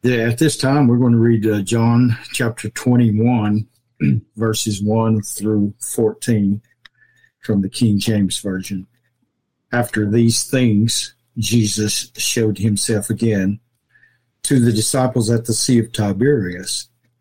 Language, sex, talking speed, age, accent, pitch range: English, male, 120 wpm, 60-79, American, 105-120 Hz